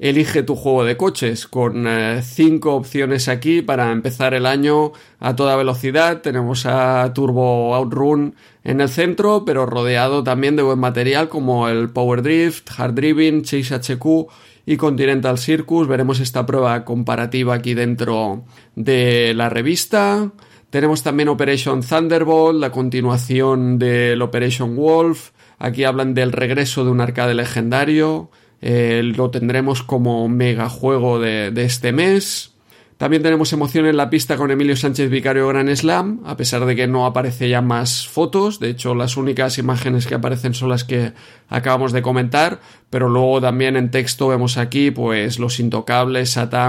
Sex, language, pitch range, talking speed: male, Spanish, 125-140 Hz, 155 wpm